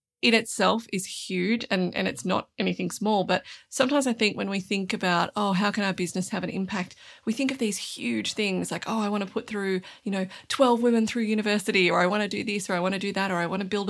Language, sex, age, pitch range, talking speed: English, female, 30-49, 185-225 Hz, 270 wpm